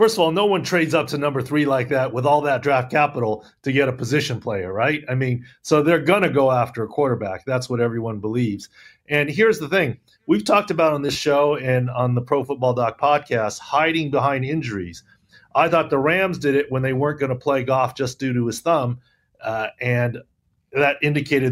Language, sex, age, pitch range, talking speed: English, male, 40-59, 125-155 Hz, 220 wpm